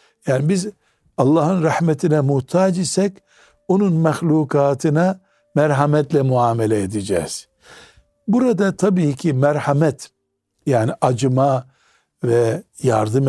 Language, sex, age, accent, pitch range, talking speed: Turkish, male, 60-79, native, 125-165 Hz, 85 wpm